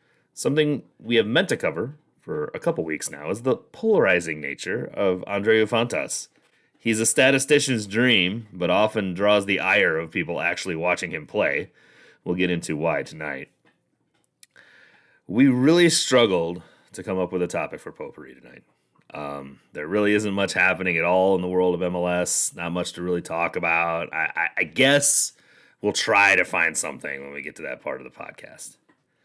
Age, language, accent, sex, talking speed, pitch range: 30-49, English, American, male, 180 wpm, 90-135 Hz